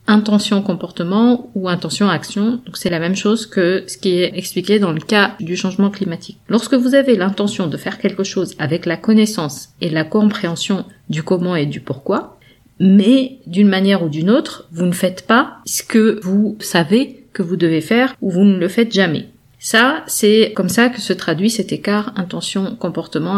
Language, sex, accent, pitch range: French, female, French, 170-215 Hz